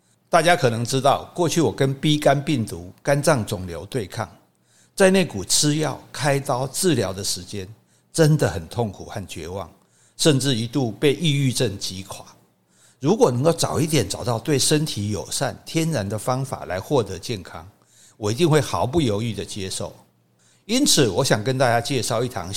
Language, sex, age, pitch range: Chinese, male, 60-79, 105-150 Hz